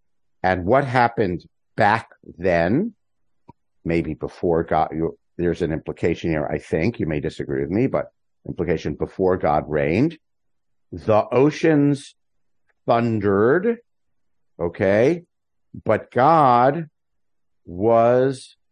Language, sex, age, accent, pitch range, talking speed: English, male, 50-69, American, 90-120 Hz, 105 wpm